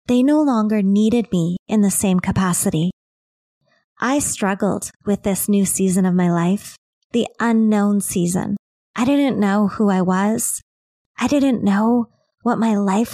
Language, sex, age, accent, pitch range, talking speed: English, female, 20-39, American, 190-230 Hz, 150 wpm